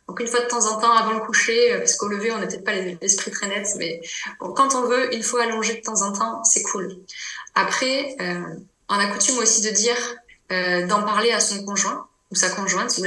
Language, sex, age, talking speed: French, female, 20-39, 240 wpm